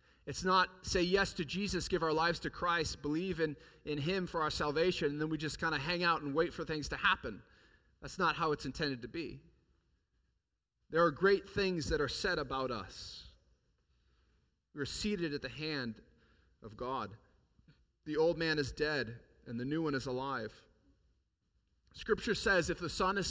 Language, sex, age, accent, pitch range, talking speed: English, male, 30-49, American, 130-175 Hz, 185 wpm